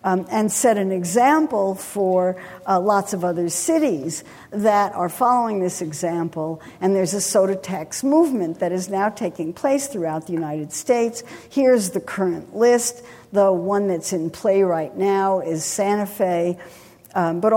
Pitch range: 175-240 Hz